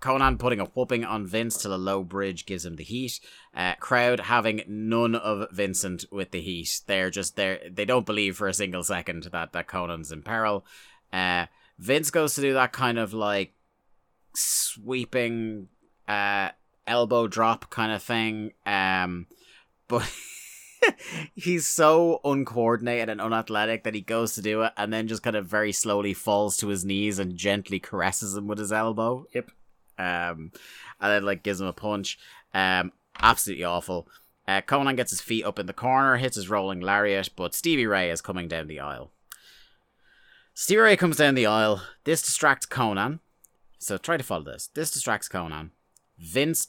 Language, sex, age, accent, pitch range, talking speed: English, male, 30-49, British, 95-125 Hz, 175 wpm